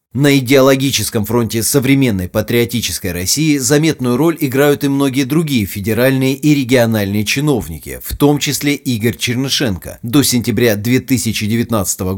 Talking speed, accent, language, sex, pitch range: 120 wpm, native, Russian, male, 110-135 Hz